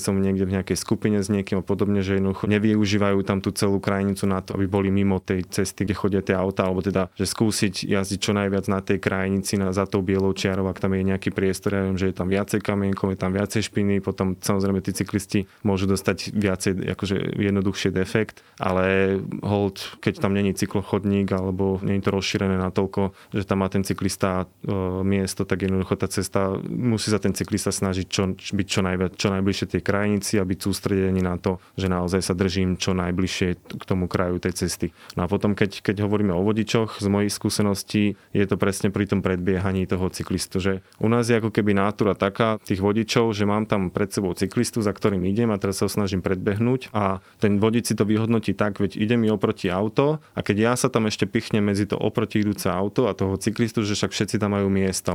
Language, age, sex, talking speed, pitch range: Slovak, 20-39, male, 215 wpm, 95-105 Hz